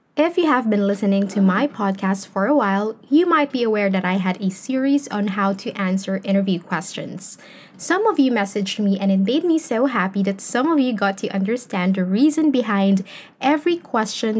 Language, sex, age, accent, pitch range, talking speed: English, female, 10-29, Filipino, 195-265 Hz, 205 wpm